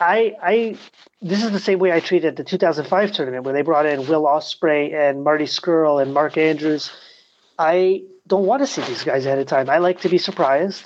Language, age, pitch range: English, 30-49, 150-185 Hz